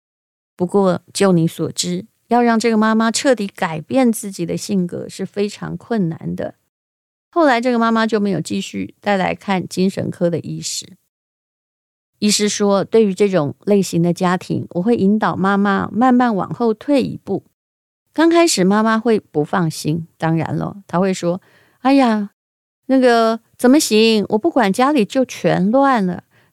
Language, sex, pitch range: Chinese, female, 175-240 Hz